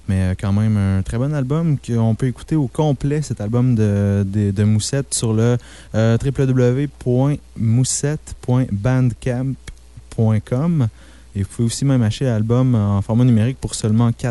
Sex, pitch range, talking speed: male, 105-140 Hz, 140 wpm